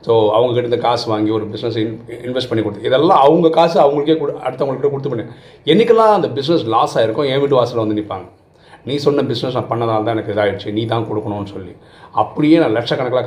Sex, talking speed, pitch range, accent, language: male, 200 wpm, 110-160 Hz, native, Tamil